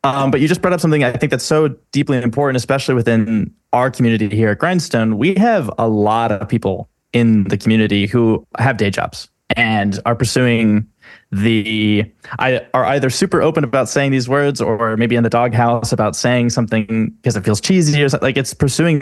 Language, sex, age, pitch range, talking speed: English, male, 20-39, 105-125 Hz, 200 wpm